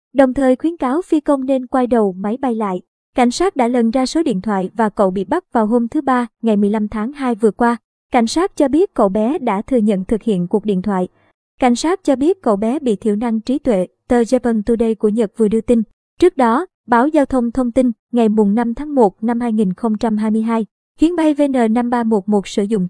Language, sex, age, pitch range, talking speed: Vietnamese, male, 20-39, 215-265 Hz, 225 wpm